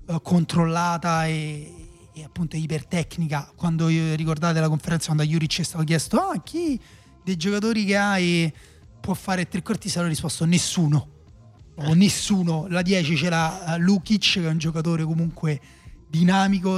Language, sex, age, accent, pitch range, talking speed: Italian, male, 30-49, native, 155-180 Hz, 150 wpm